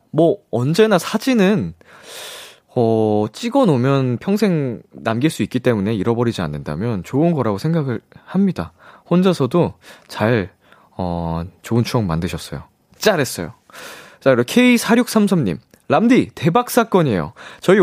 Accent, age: native, 20-39